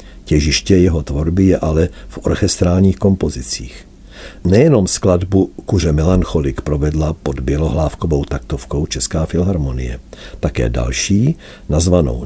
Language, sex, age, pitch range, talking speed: Czech, male, 50-69, 75-100 Hz, 105 wpm